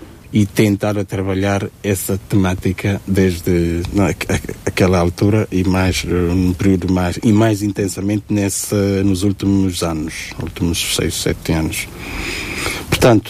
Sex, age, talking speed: male, 60-79, 120 wpm